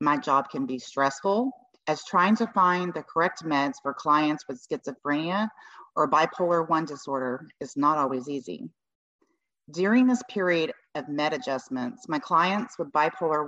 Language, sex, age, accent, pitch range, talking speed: English, female, 30-49, American, 140-190 Hz, 150 wpm